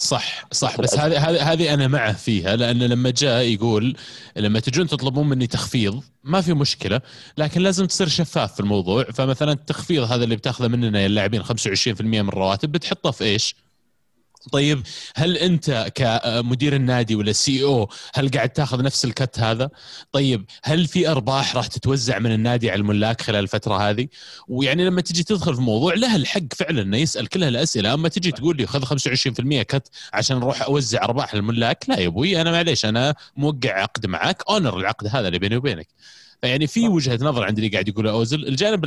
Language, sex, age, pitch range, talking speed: Arabic, male, 20-39, 105-140 Hz, 180 wpm